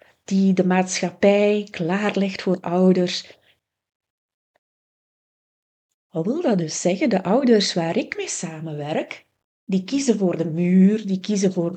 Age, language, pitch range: 30-49, Dutch, 175-225 Hz